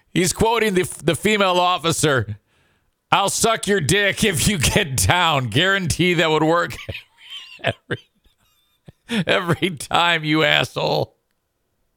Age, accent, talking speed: 50-69, American, 125 wpm